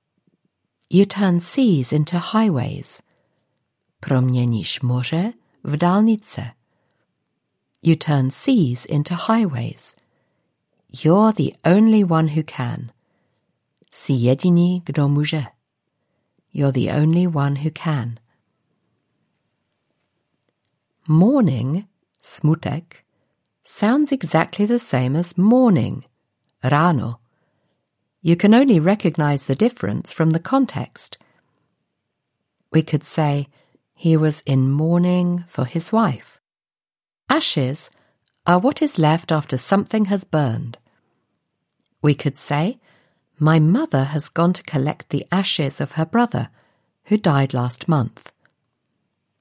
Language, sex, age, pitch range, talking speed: Czech, female, 50-69, 135-190 Hz, 105 wpm